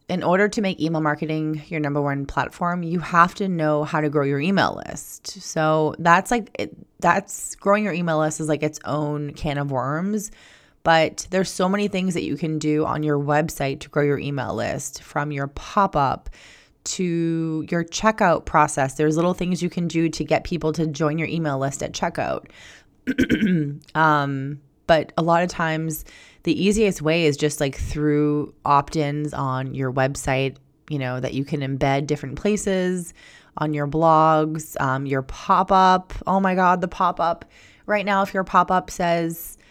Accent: American